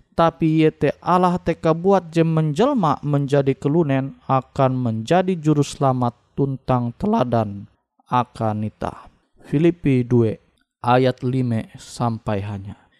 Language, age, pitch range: Indonesian, 20-39, 120-170 Hz